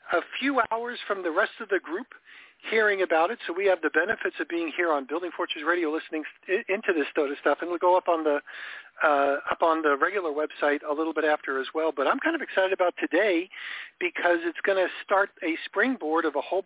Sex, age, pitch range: male, 50-69, 155-210 Hz